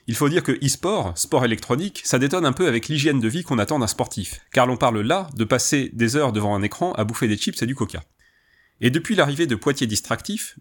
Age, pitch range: 30-49, 115-155 Hz